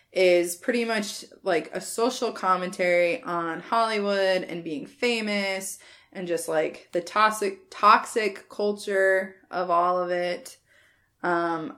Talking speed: 120 wpm